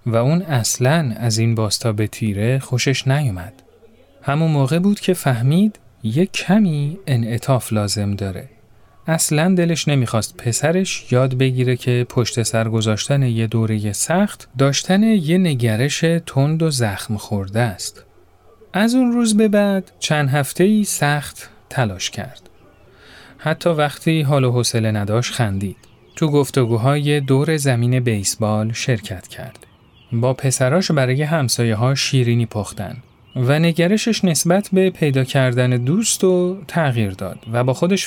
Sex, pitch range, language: male, 115-170 Hz, Persian